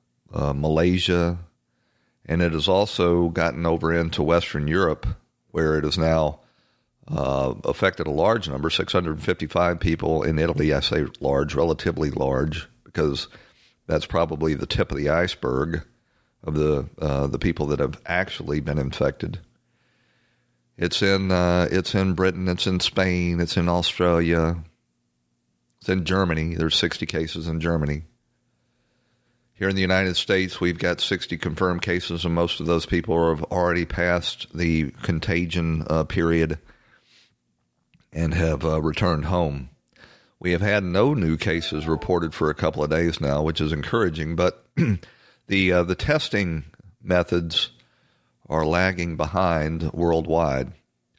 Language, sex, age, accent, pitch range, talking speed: English, male, 40-59, American, 75-90 Hz, 145 wpm